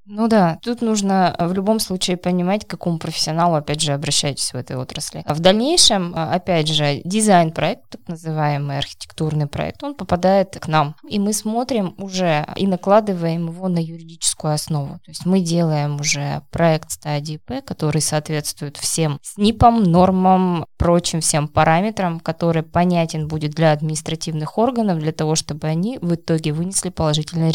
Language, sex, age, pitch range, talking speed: Russian, female, 20-39, 155-195 Hz, 155 wpm